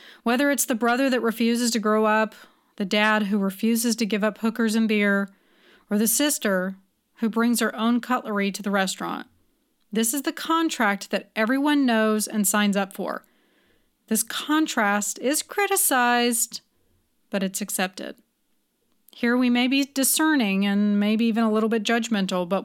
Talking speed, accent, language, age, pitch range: 160 wpm, American, English, 30-49, 210-260 Hz